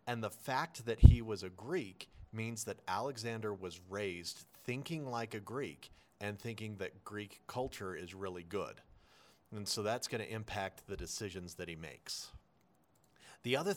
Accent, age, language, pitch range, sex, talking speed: American, 40-59, English, 95-115 Hz, male, 165 wpm